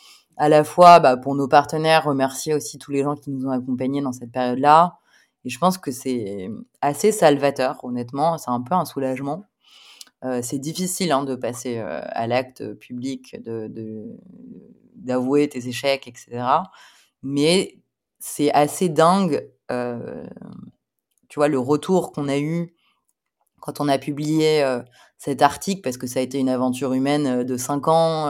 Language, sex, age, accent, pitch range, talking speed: French, female, 20-39, French, 130-170 Hz, 165 wpm